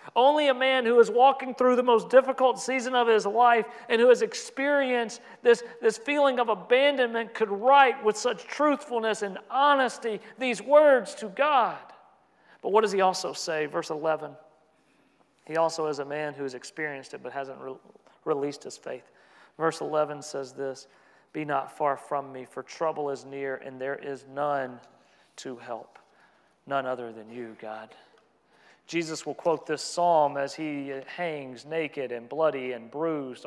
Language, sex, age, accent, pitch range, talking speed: English, male, 40-59, American, 150-240 Hz, 165 wpm